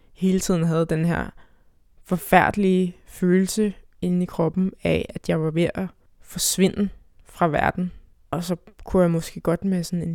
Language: Danish